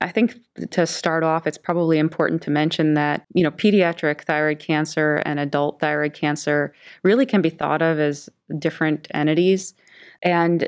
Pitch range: 150-175 Hz